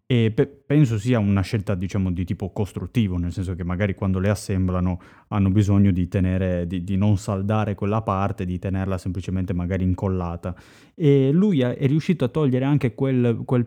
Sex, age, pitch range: male, 20-39, 100-130 Hz